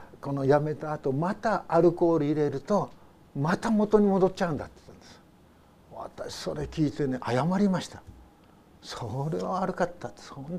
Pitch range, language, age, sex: 125-180 Hz, Japanese, 60-79, male